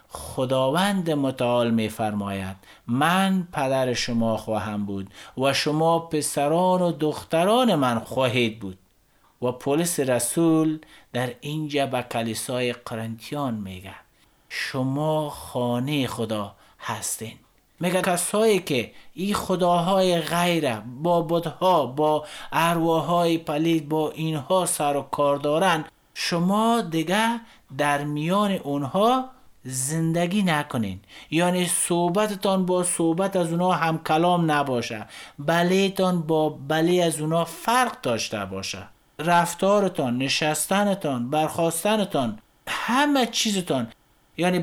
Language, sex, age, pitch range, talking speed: Persian, male, 50-69, 125-180 Hz, 105 wpm